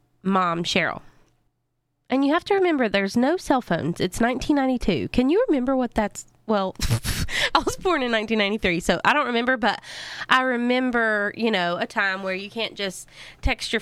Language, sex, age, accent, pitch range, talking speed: English, female, 20-39, American, 185-250 Hz, 180 wpm